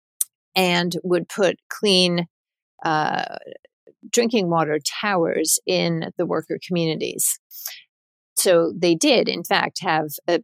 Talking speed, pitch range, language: 110 wpm, 170-195 Hz, English